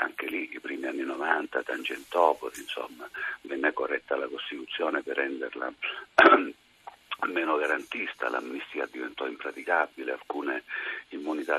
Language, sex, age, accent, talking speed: Italian, male, 60-79, native, 110 wpm